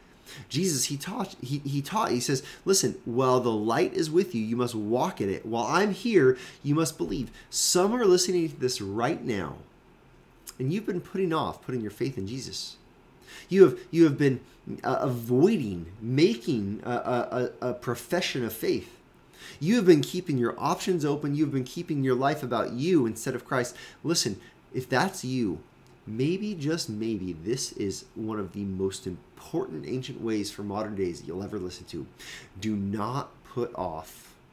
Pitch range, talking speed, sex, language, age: 115-160 Hz, 175 wpm, male, English, 30-49